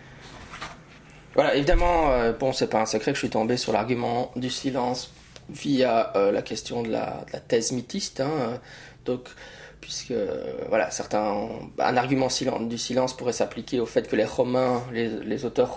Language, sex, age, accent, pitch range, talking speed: French, male, 20-39, French, 115-135 Hz, 165 wpm